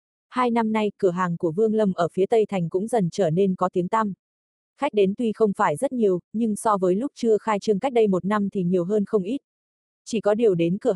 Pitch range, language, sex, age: 180-220 Hz, Vietnamese, female, 20-39